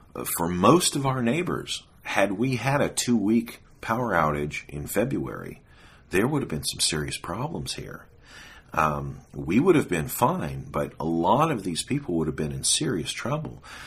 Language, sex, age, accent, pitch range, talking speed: English, male, 50-69, American, 75-100 Hz, 175 wpm